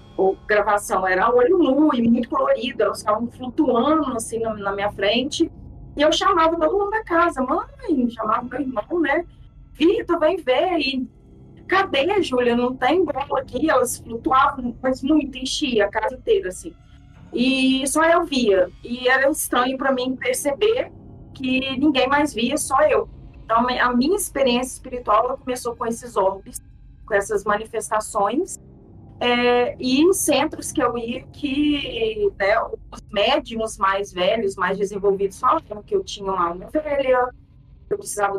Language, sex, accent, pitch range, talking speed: Portuguese, female, Brazilian, 220-300 Hz, 155 wpm